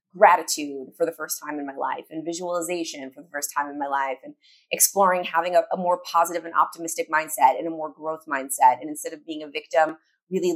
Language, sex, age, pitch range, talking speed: English, female, 20-39, 155-195 Hz, 220 wpm